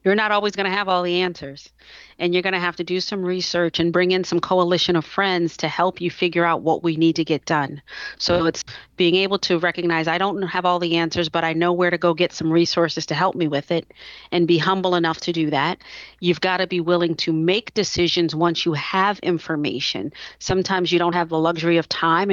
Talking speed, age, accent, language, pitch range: 240 wpm, 40-59, American, English, 170-190 Hz